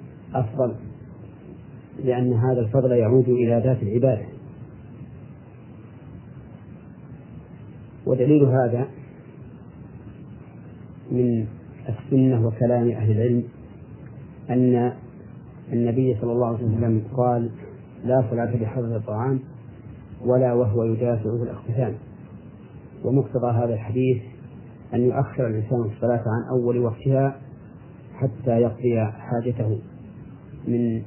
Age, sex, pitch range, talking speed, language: 40-59, male, 115-130 Hz, 85 wpm, Arabic